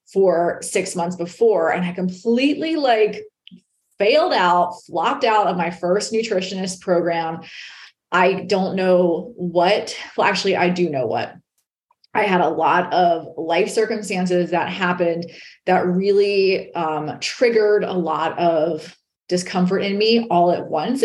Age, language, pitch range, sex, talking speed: 30-49, English, 175-245 Hz, female, 140 wpm